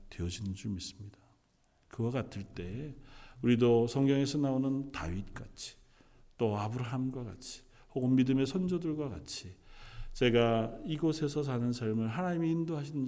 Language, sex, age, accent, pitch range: Korean, male, 40-59, native, 100-130 Hz